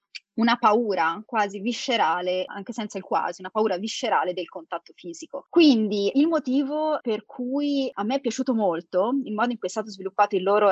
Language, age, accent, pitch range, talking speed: Italian, 30-49, native, 200-260 Hz, 185 wpm